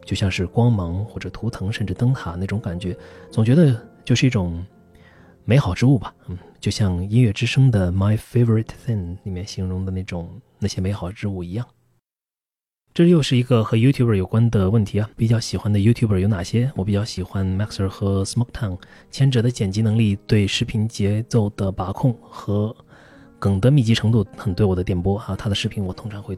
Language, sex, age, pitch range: Chinese, male, 30-49, 95-120 Hz